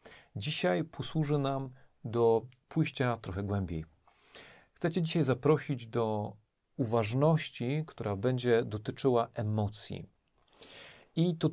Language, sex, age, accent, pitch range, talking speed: Polish, male, 40-59, native, 105-145 Hz, 100 wpm